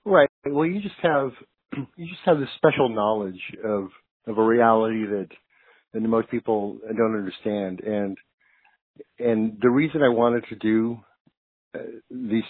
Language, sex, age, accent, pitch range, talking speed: English, male, 50-69, American, 105-120 Hz, 150 wpm